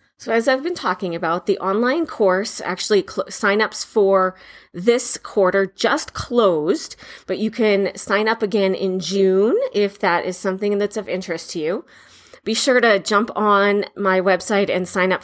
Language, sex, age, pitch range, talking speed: English, female, 30-49, 195-235 Hz, 175 wpm